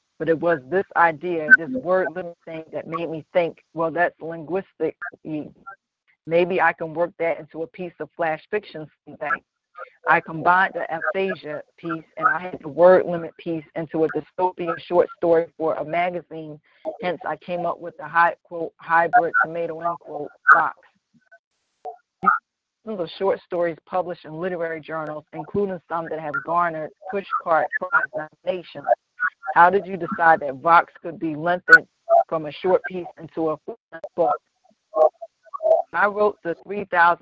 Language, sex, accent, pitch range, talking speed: English, female, American, 160-185 Hz, 150 wpm